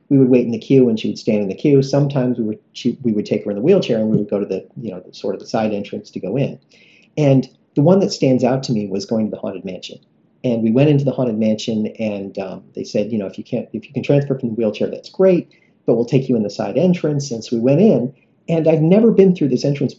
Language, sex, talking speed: English, male, 295 wpm